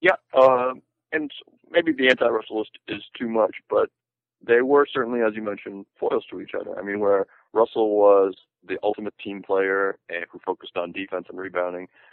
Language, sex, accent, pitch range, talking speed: English, male, American, 85-115 Hz, 180 wpm